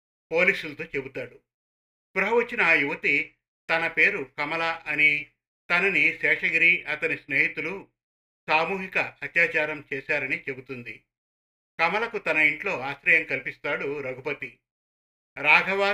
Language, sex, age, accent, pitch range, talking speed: Telugu, male, 50-69, native, 140-195 Hz, 95 wpm